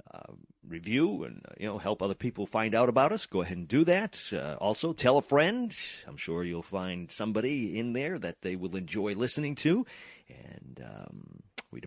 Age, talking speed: 40-59, 190 wpm